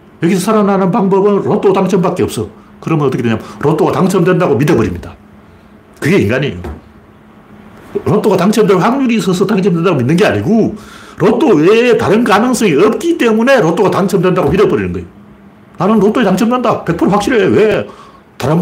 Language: Korean